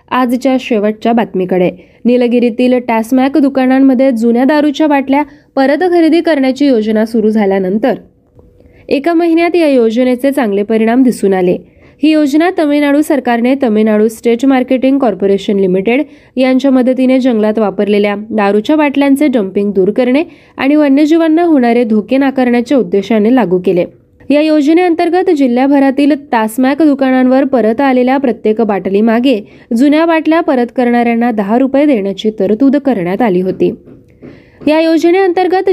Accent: native